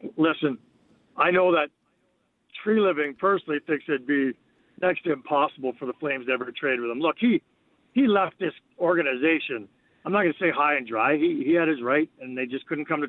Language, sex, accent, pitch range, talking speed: English, male, American, 140-220 Hz, 210 wpm